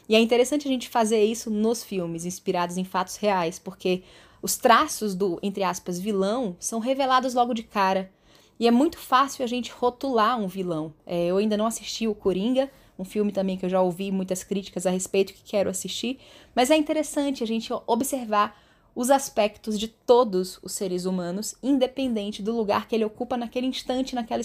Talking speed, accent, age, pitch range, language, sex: 185 wpm, Brazilian, 10-29, 190-245 Hz, Portuguese, female